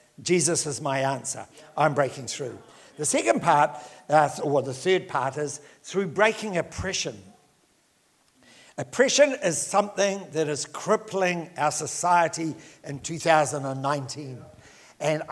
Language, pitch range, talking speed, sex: English, 150-195 Hz, 115 wpm, male